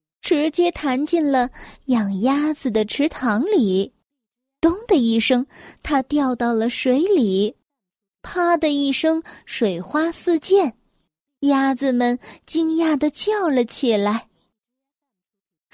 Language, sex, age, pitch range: Chinese, female, 10-29, 225-315 Hz